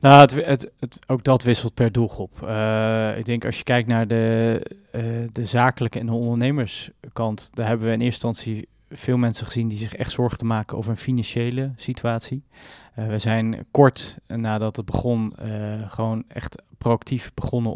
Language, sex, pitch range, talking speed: Dutch, male, 110-125 Hz, 170 wpm